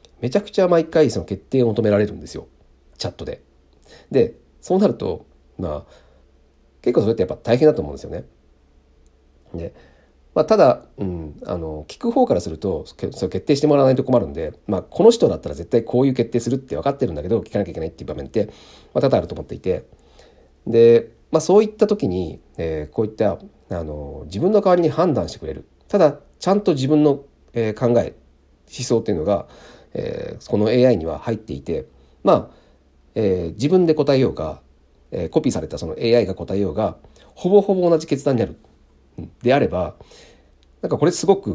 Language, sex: Japanese, male